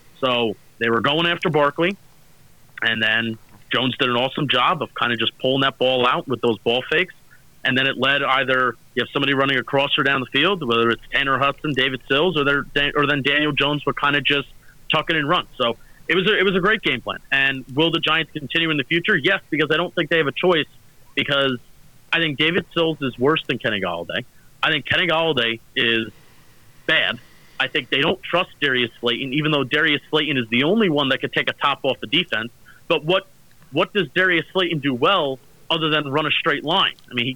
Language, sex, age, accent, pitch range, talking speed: English, male, 30-49, American, 130-160 Hz, 225 wpm